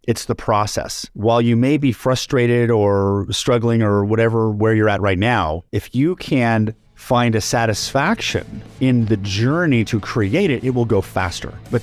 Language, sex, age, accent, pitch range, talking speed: English, male, 30-49, American, 115-175 Hz, 170 wpm